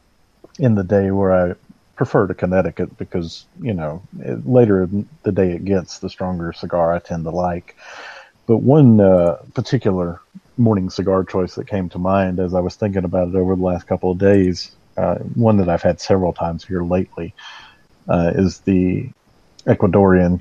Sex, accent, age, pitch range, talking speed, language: male, American, 40-59, 90-100 Hz, 180 wpm, English